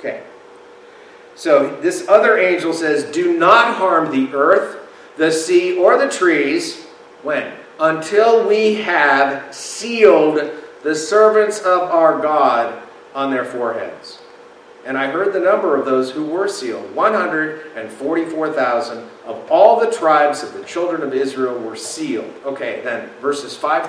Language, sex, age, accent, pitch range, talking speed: English, male, 40-59, American, 140-215 Hz, 140 wpm